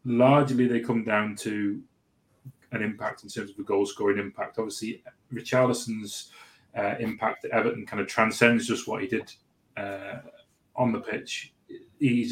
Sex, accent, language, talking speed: male, British, English, 150 wpm